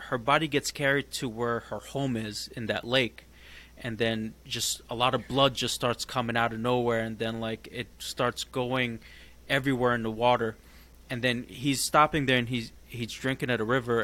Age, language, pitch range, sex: 20-39, English, 110-125 Hz, male